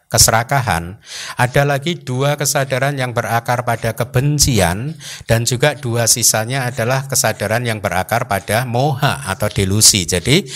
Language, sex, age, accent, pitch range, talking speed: Indonesian, male, 50-69, native, 100-135 Hz, 125 wpm